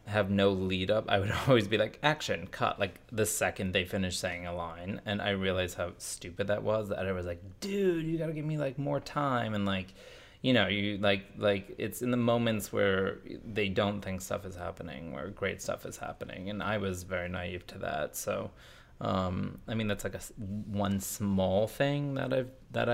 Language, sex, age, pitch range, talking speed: English, male, 20-39, 95-115 Hz, 215 wpm